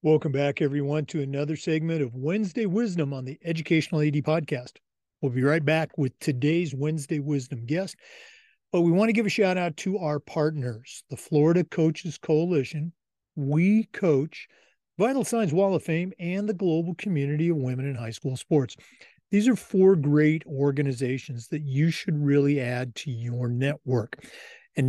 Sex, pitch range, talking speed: male, 140-180 Hz, 165 wpm